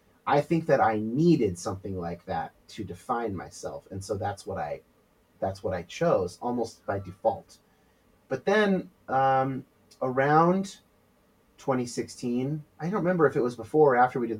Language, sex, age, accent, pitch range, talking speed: English, male, 30-49, American, 100-135 Hz, 165 wpm